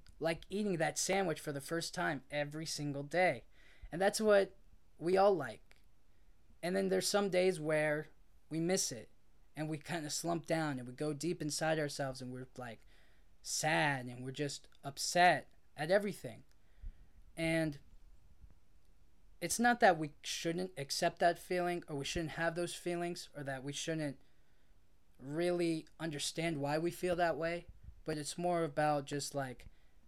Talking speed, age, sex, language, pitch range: 160 wpm, 10-29, male, English, 140-175 Hz